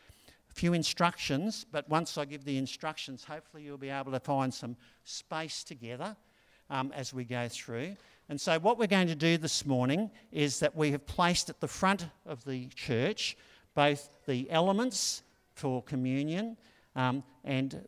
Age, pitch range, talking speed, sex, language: 50-69, 135-175 Hz, 165 wpm, male, English